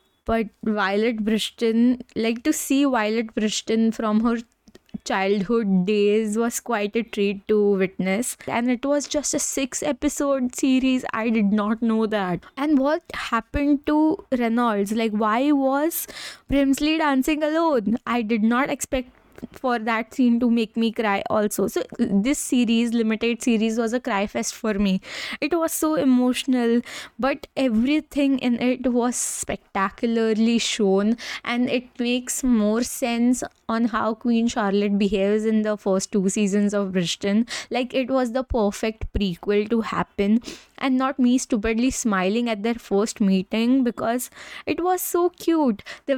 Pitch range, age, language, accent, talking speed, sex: 215-260 Hz, 10-29, English, Indian, 150 wpm, female